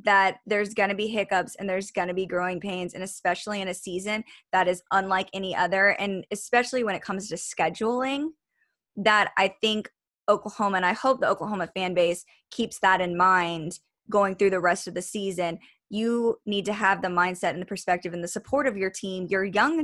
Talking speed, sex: 210 wpm, female